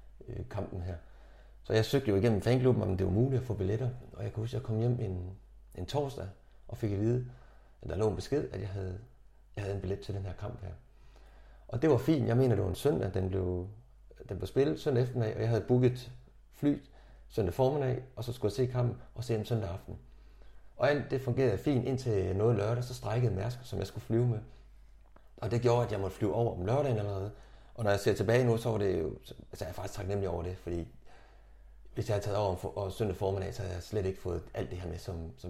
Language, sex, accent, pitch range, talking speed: Danish, male, native, 95-120 Hz, 250 wpm